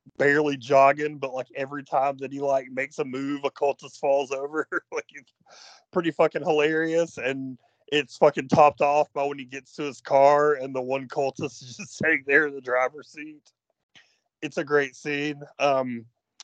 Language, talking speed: English, 185 wpm